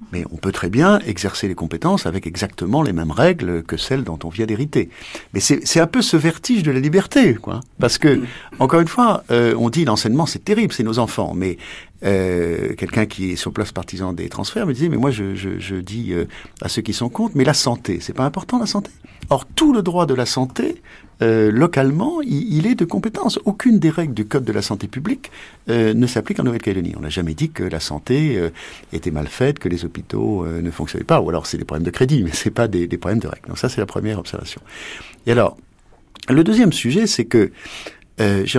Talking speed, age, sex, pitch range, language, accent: 240 wpm, 50-69, male, 95-150 Hz, French, French